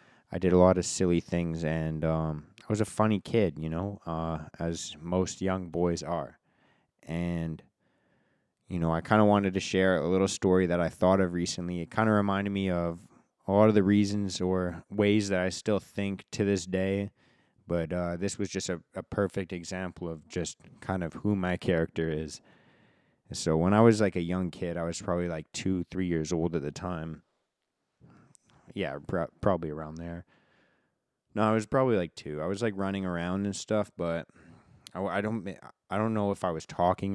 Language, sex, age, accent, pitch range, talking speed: English, male, 20-39, American, 85-100 Hz, 195 wpm